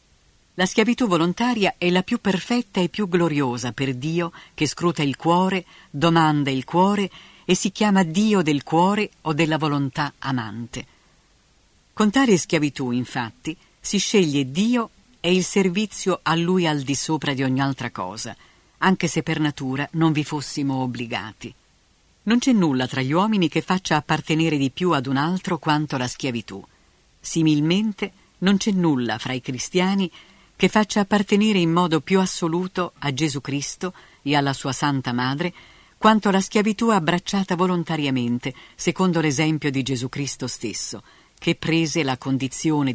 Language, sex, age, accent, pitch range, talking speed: Italian, female, 50-69, native, 135-185 Hz, 155 wpm